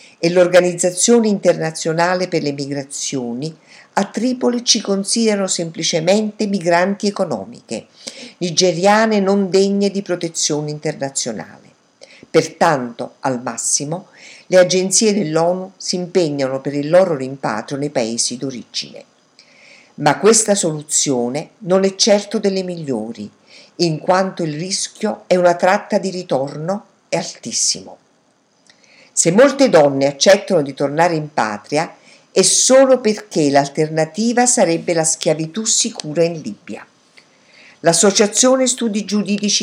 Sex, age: female, 50-69